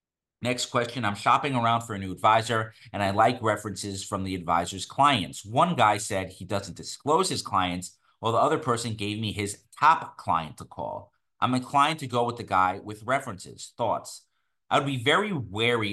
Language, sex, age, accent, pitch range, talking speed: English, male, 30-49, American, 95-120 Hz, 190 wpm